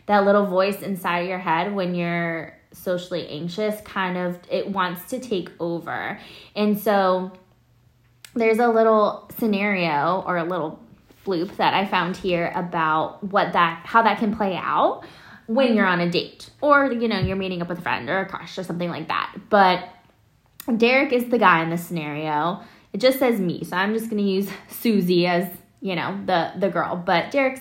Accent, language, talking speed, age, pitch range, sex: American, English, 185 wpm, 10-29, 180-230 Hz, female